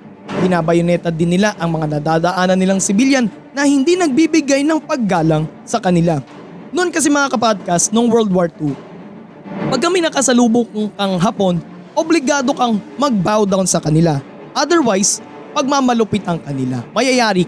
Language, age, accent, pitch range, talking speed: Filipino, 20-39, native, 180-245 Hz, 135 wpm